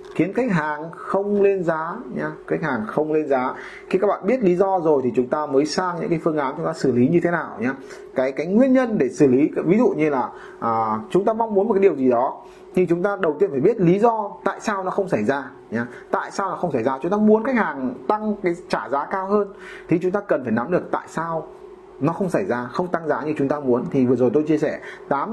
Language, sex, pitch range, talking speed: Vietnamese, male, 155-215 Hz, 275 wpm